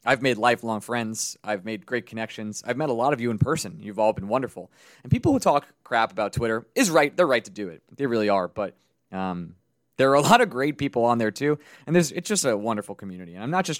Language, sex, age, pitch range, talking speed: English, male, 20-39, 105-145 Hz, 260 wpm